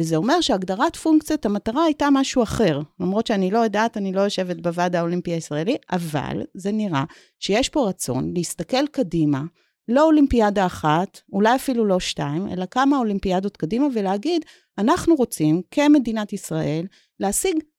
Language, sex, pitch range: Hebrew, female, 175-265 Hz